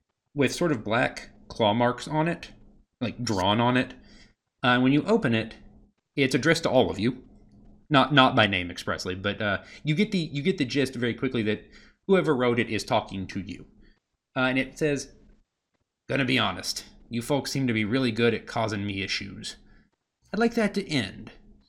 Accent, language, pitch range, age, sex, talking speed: American, English, 105-145 Hz, 30-49, male, 195 wpm